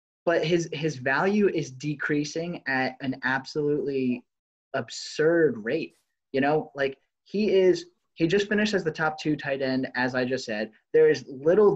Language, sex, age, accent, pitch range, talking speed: English, male, 20-39, American, 135-165 Hz, 165 wpm